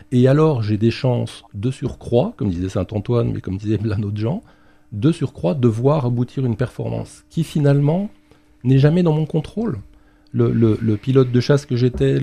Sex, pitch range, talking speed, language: male, 105-135 Hz, 185 wpm, French